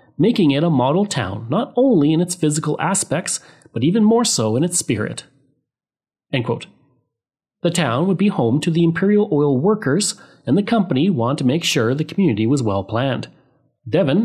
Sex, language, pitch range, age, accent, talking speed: male, English, 120-180 Hz, 30-49, Canadian, 180 wpm